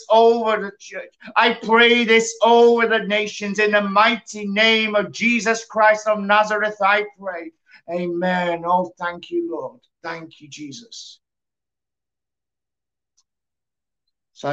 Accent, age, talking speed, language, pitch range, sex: British, 50-69, 120 wpm, English, 105-150 Hz, male